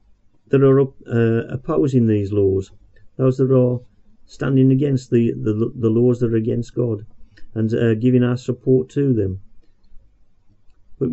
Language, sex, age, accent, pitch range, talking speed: English, male, 50-69, British, 105-125 Hz, 150 wpm